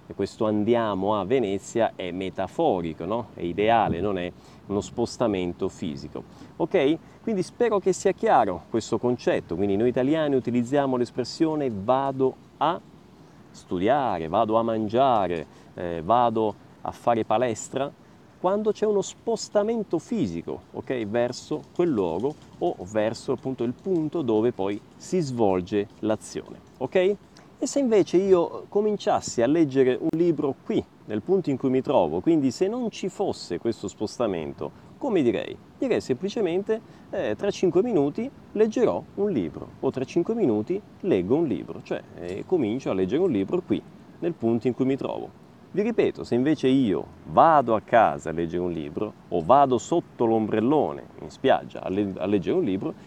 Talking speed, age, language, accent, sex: 155 wpm, 30-49, Italian, native, male